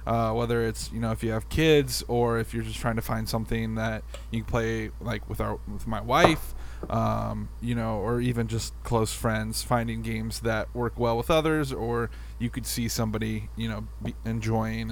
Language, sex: English, male